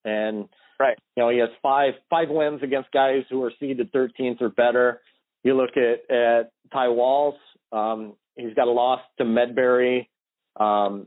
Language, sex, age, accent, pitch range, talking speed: English, male, 40-59, American, 115-135 Hz, 165 wpm